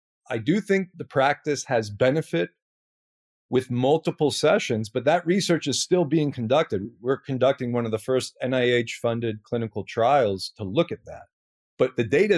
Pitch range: 120-170 Hz